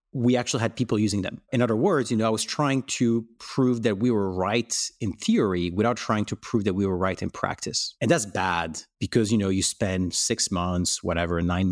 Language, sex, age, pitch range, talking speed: English, male, 30-49, 95-130 Hz, 225 wpm